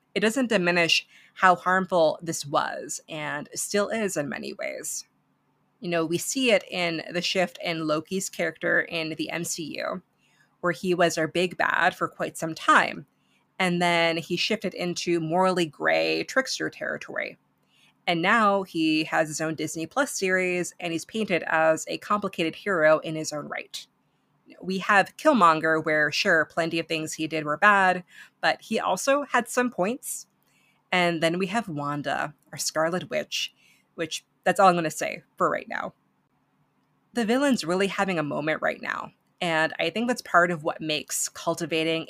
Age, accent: 30-49, American